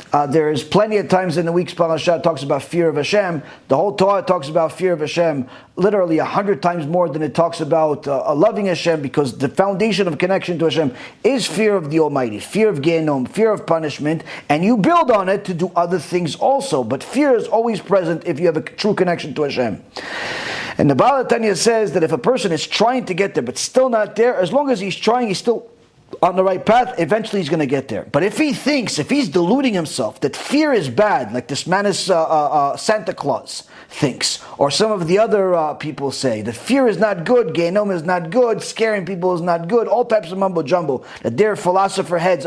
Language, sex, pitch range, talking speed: English, male, 165-225 Hz, 230 wpm